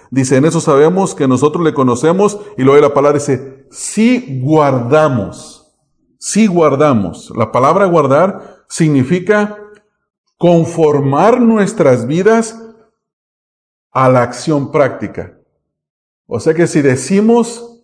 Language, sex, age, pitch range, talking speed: English, male, 40-59, 130-195 Hz, 120 wpm